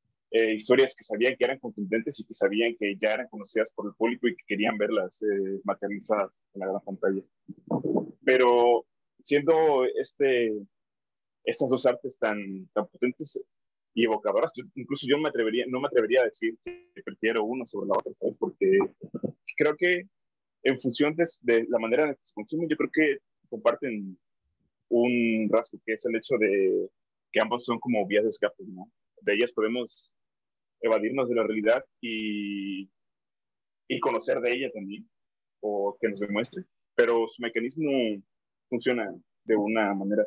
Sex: male